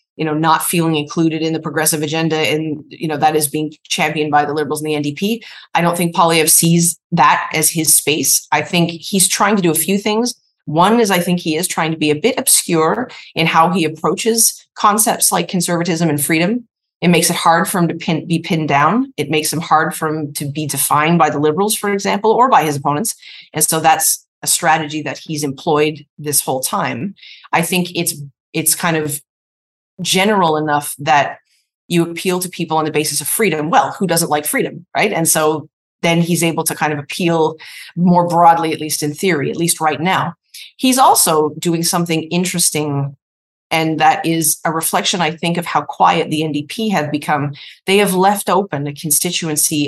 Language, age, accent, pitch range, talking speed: English, 30-49, American, 150-175 Hz, 205 wpm